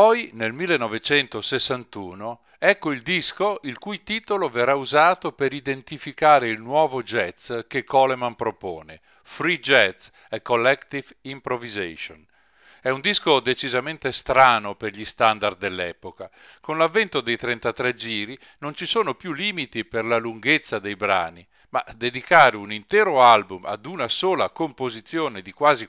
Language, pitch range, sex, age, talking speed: Italian, 115-165 Hz, male, 50-69, 135 wpm